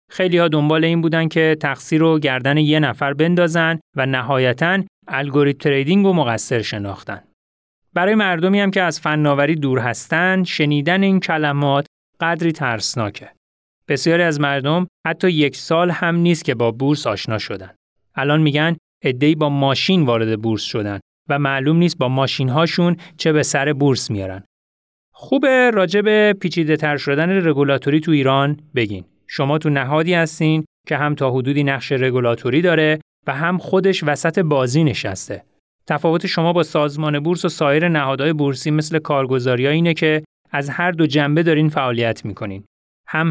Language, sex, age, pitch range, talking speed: Persian, male, 30-49, 130-165 Hz, 150 wpm